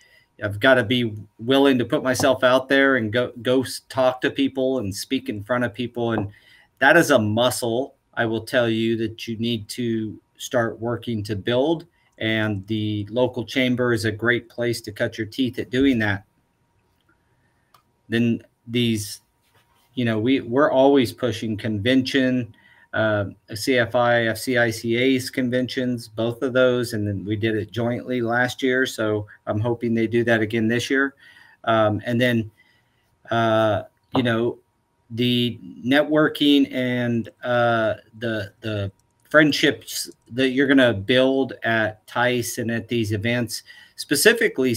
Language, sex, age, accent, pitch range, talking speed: English, male, 40-59, American, 110-125 Hz, 150 wpm